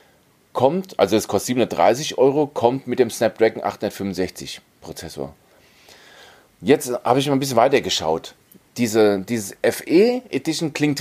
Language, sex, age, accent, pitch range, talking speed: German, male, 30-49, German, 110-150 Hz, 135 wpm